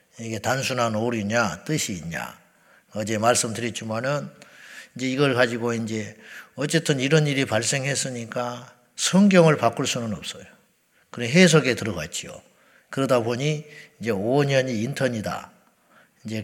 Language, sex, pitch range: Korean, male, 115-145 Hz